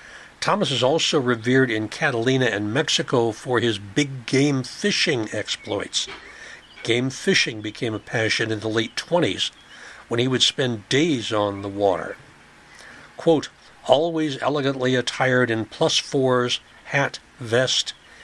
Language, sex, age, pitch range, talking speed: English, male, 60-79, 110-140 Hz, 130 wpm